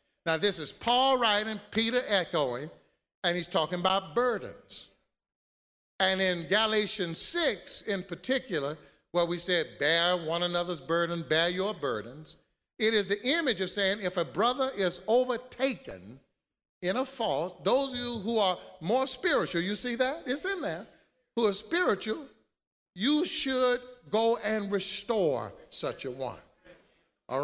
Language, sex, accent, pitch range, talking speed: English, male, American, 165-240 Hz, 145 wpm